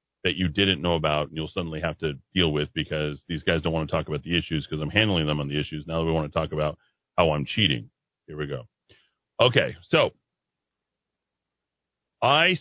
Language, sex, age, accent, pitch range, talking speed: English, male, 40-59, American, 80-105 Hz, 215 wpm